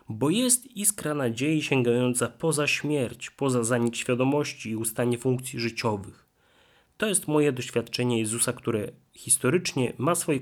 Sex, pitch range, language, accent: male, 115-145 Hz, Polish, native